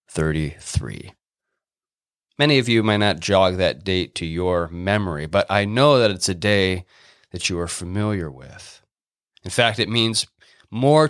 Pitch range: 90-120 Hz